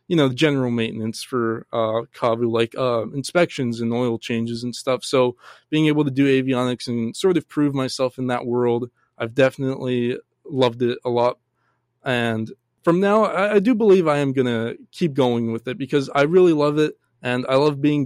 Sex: male